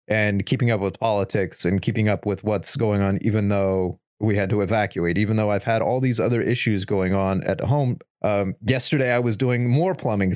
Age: 30-49